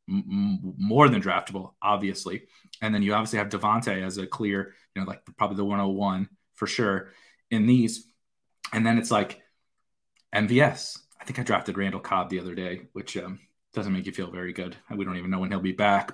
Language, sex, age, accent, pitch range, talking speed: English, male, 30-49, American, 100-125 Hz, 195 wpm